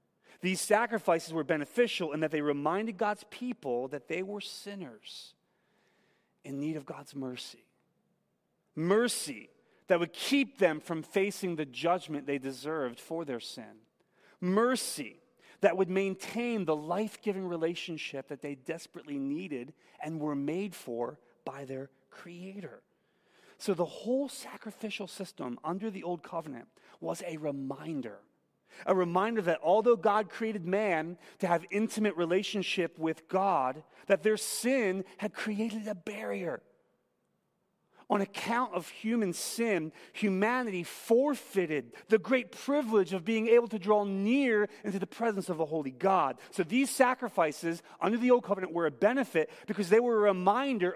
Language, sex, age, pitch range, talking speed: English, male, 30-49, 160-215 Hz, 140 wpm